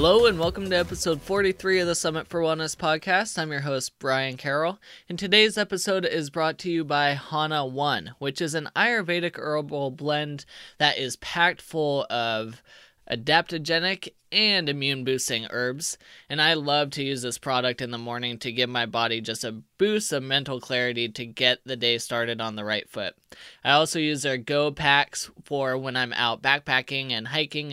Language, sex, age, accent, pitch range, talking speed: English, male, 20-39, American, 125-165 Hz, 185 wpm